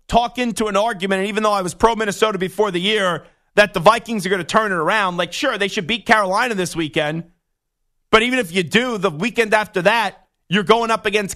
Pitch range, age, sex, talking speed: 185-225 Hz, 30-49, male, 225 wpm